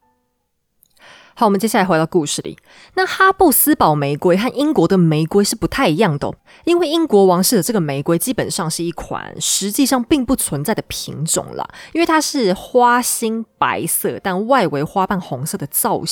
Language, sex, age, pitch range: Chinese, female, 20-39, 165-245 Hz